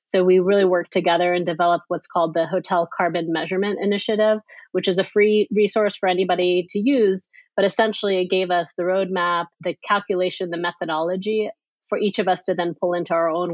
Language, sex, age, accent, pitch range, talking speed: English, female, 30-49, American, 170-190 Hz, 195 wpm